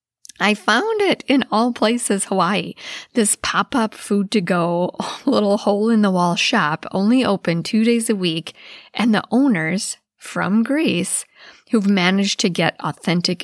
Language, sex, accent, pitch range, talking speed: English, female, American, 175-240 Hz, 130 wpm